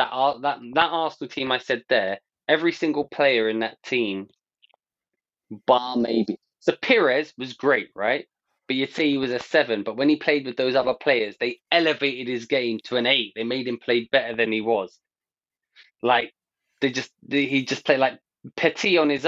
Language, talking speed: English, 195 wpm